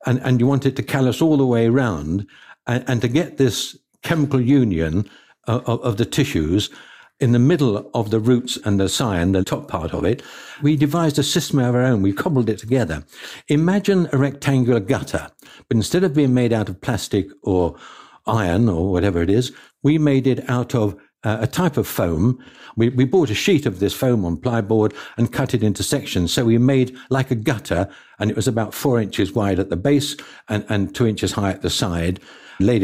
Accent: British